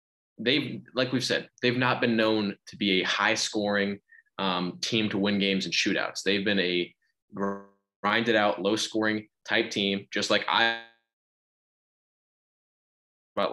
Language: English